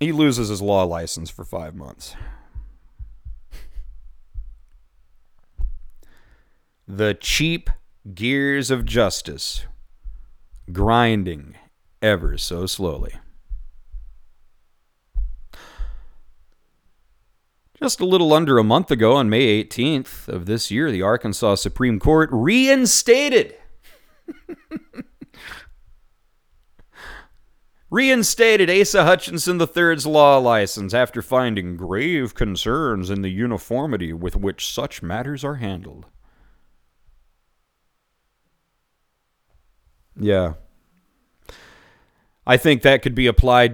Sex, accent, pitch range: male, American, 85-130 Hz